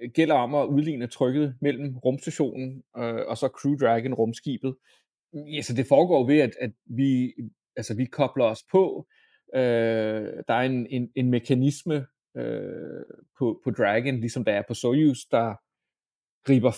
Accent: native